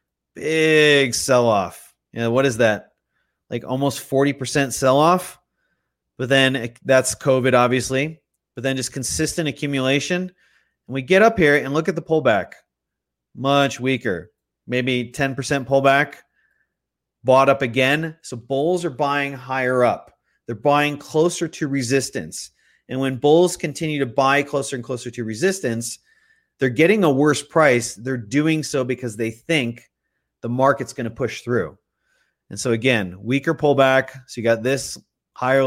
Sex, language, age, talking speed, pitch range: male, English, 30-49, 145 wpm, 120-140 Hz